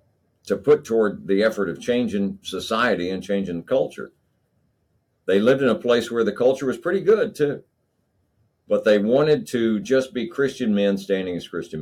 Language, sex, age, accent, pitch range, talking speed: English, male, 50-69, American, 85-115 Hz, 175 wpm